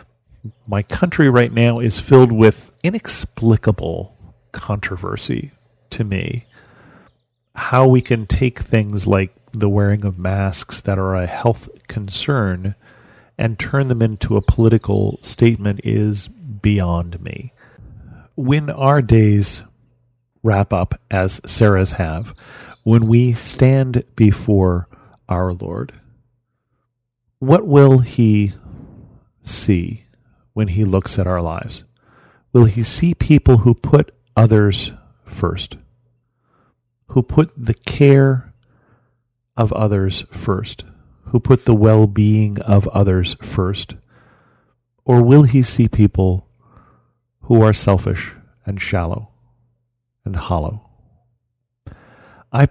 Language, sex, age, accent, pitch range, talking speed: English, male, 40-59, American, 100-125 Hz, 110 wpm